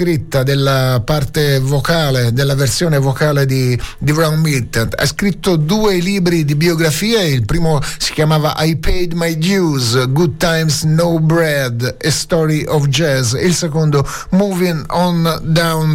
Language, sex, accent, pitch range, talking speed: Italian, male, native, 140-170 Hz, 140 wpm